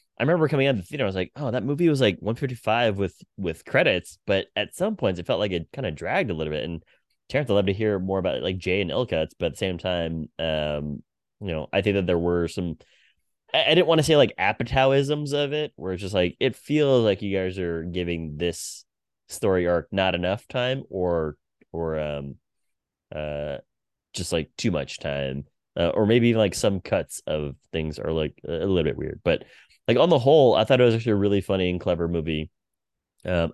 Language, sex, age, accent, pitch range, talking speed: English, male, 20-39, American, 85-115 Hz, 235 wpm